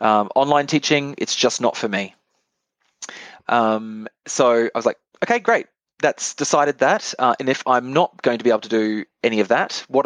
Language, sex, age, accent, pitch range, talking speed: English, male, 20-39, Australian, 110-135 Hz, 195 wpm